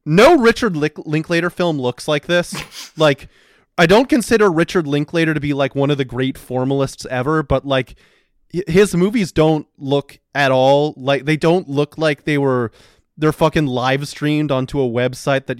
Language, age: English, 30-49